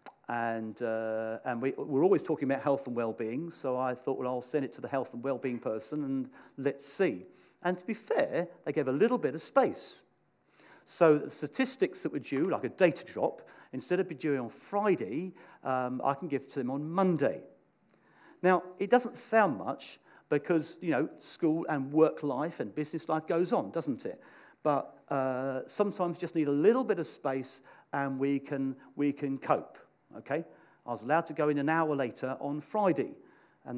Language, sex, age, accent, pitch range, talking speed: English, male, 50-69, British, 130-180 Hz, 195 wpm